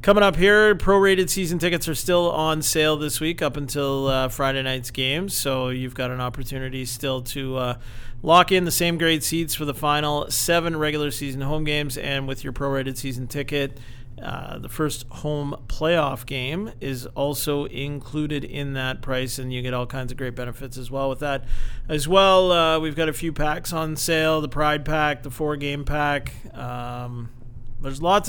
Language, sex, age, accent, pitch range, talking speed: English, male, 40-59, American, 130-155 Hz, 190 wpm